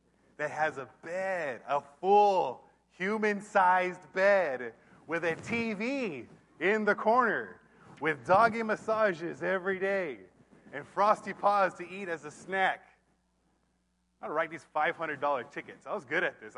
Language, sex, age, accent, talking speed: English, male, 30-49, American, 140 wpm